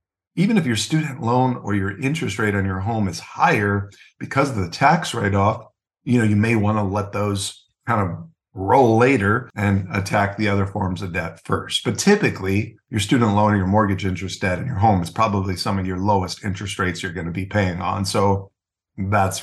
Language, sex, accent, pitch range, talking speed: English, male, American, 100-125 Hz, 210 wpm